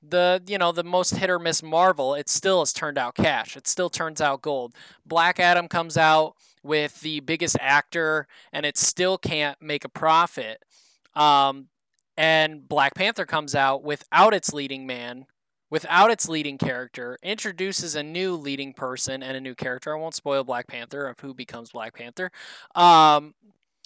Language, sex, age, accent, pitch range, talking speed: English, male, 20-39, American, 140-180 Hz, 175 wpm